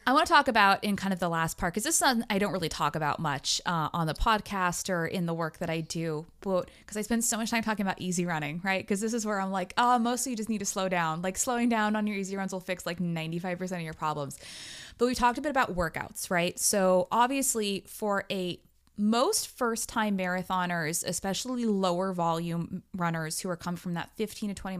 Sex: female